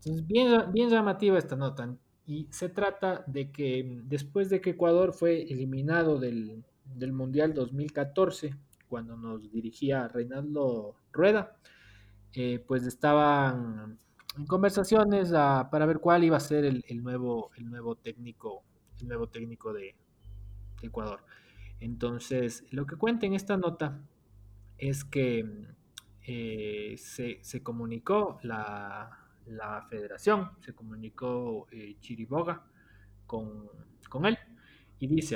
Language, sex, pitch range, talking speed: Spanish, male, 115-155 Hz, 125 wpm